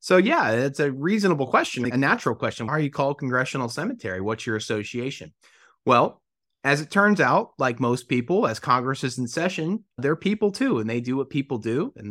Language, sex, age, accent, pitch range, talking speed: English, male, 30-49, American, 115-140 Hz, 205 wpm